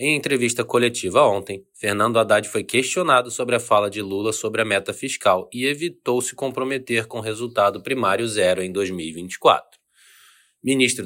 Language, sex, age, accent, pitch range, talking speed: Portuguese, male, 20-39, Brazilian, 105-130 Hz, 155 wpm